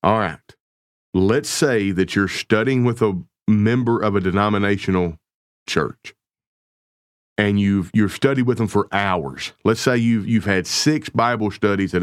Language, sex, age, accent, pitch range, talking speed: English, male, 40-59, American, 95-120 Hz, 155 wpm